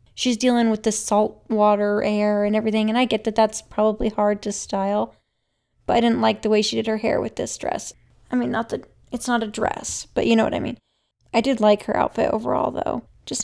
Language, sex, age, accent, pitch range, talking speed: English, female, 10-29, American, 210-245 Hz, 235 wpm